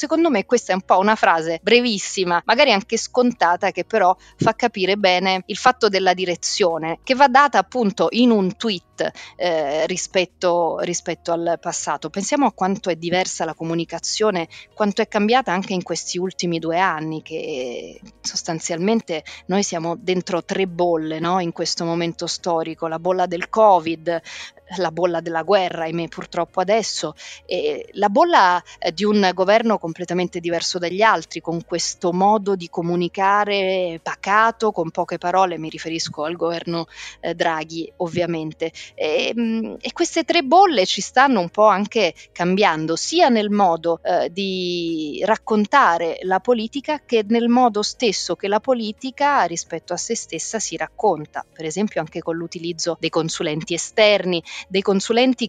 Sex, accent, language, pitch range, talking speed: female, native, Italian, 170-215 Hz, 150 wpm